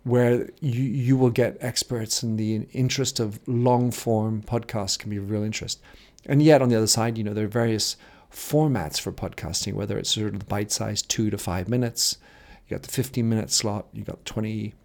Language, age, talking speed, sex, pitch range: English, 40-59, 205 wpm, male, 105-125 Hz